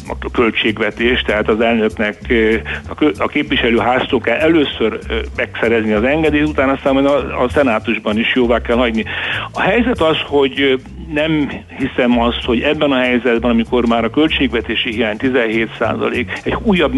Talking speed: 140 wpm